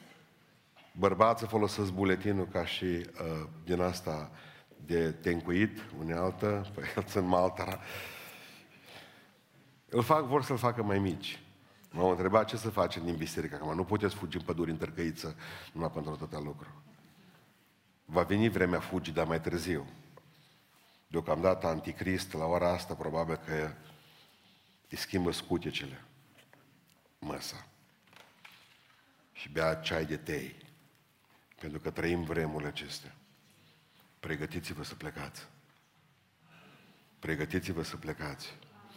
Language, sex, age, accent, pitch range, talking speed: Romanian, male, 50-69, native, 80-95 Hz, 115 wpm